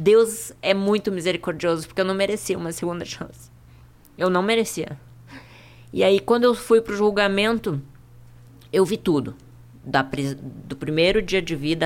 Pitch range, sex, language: 125-165 Hz, female, Portuguese